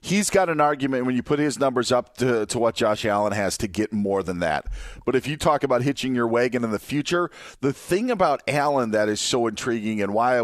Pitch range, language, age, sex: 115-145 Hz, English, 40-59, male